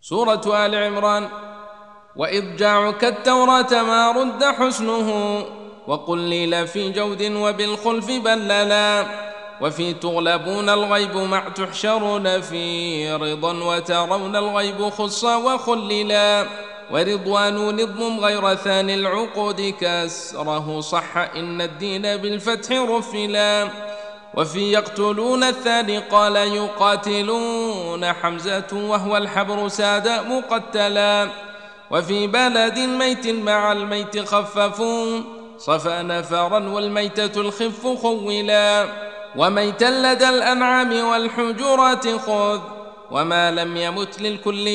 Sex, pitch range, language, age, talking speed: male, 200-225 Hz, Arabic, 20-39, 90 wpm